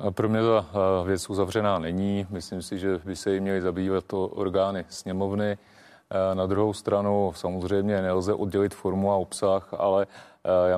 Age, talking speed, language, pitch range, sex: 30-49, 155 wpm, Czech, 95-105 Hz, male